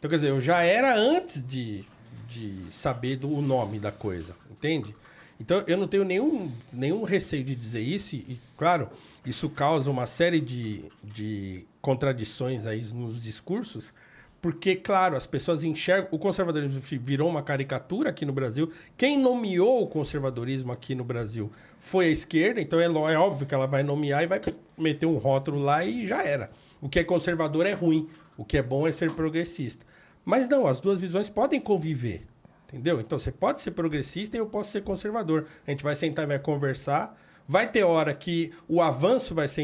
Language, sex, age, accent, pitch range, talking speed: Portuguese, male, 50-69, Brazilian, 135-175 Hz, 190 wpm